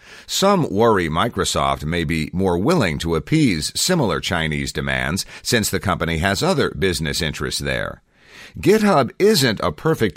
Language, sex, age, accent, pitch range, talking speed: English, male, 50-69, American, 80-100 Hz, 140 wpm